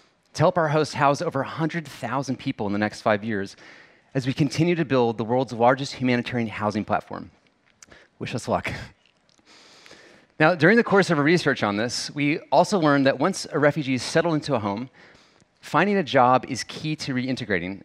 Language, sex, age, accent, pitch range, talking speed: English, male, 30-49, American, 120-155 Hz, 185 wpm